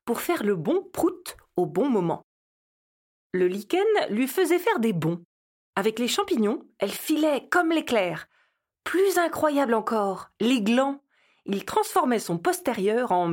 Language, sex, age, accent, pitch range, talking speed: French, female, 40-59, French, 195-315 Hz, 145 wpm